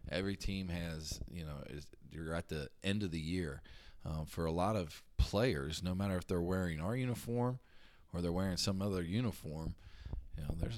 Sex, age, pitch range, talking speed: male, 20-39, 80-100 Hz, 195 wpm